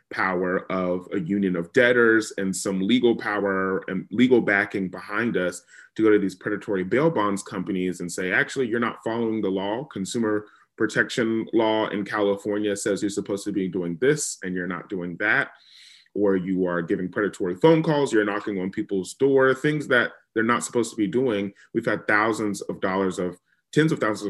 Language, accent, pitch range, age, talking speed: English, American, 95-110 Hz, 30-49, 190 wpm